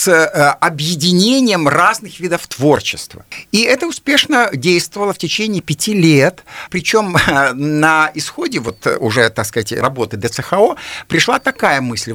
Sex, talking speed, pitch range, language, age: male, 120 wpm, 140-195 Hz, Russian, 50-69